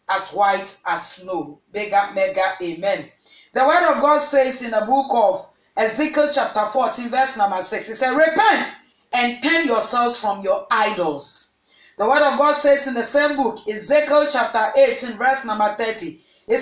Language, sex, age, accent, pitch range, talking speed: English, female, 30-49, Nigerian, 215-290 Hz, 170 wpm